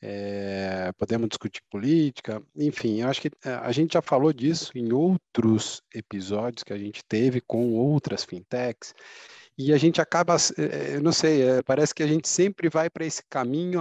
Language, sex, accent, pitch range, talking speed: Portuguese, male, Brazilian, 105-150 Hz, 170 wpm